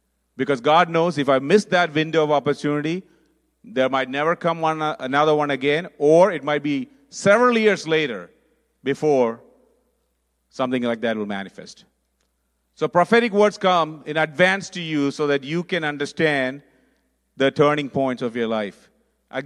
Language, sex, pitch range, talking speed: English, male, 110-155 Hz, 155 wpm